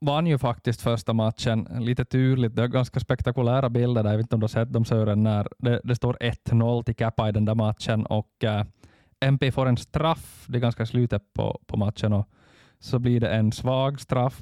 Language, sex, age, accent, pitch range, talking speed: Swedish, male, 20-39, Finnish, 105-125 Hz, 225 wpm